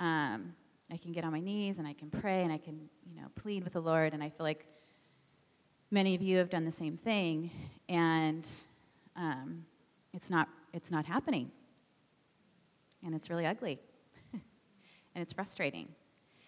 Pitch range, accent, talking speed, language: 150-180 Hz, American, 170 wpm, English